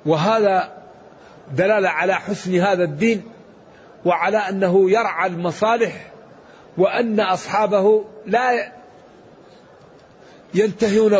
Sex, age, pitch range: male, 60-79, 185-220 Hz